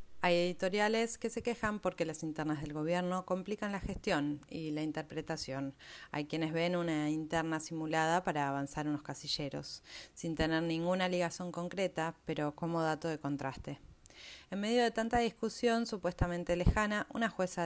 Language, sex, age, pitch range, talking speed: Spanish, female, 30-49, 155-195 Hz, 155 wpm